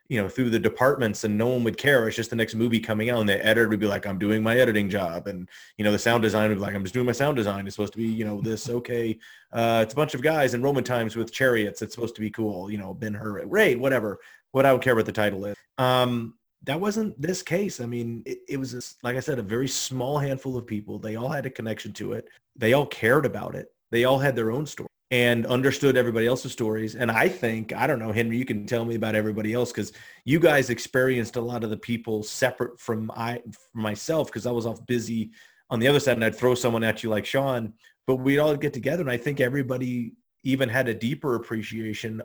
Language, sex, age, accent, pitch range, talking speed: English, male, 30-49, American, 110-130 Hz, 260 wpm